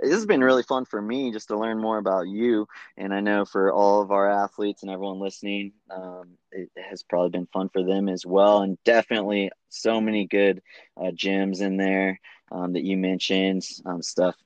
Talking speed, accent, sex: 205 wpm, American, male